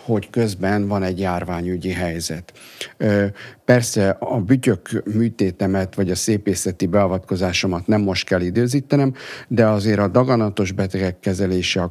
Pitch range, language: 95-115 Hz, Hungarian